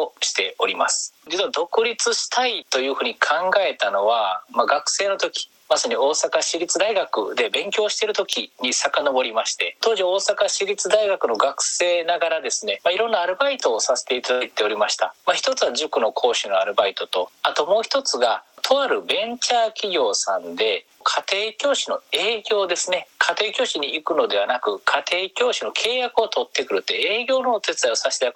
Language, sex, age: Japanese, male, 40-59